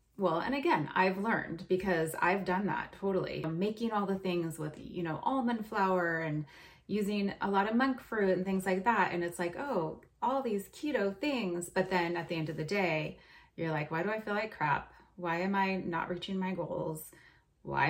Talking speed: 210 wpm